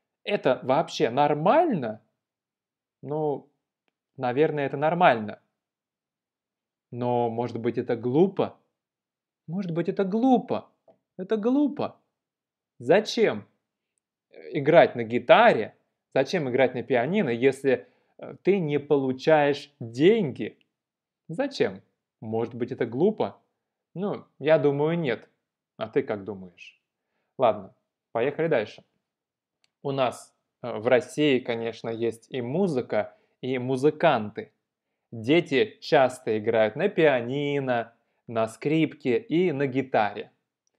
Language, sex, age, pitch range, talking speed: Russian, male, 20-39, 120-155 Hz, 100 wpm